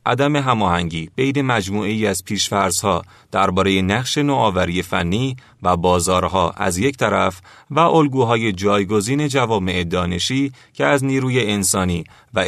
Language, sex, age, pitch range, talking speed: Persian, male, 30-49, 95-130 Hz, 120 wpm